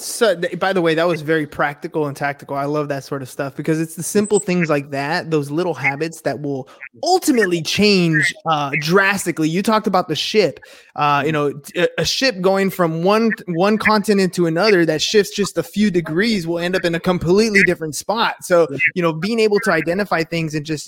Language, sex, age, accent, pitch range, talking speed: English, male, 20-39, American, 155-185 Hz, 210 wpm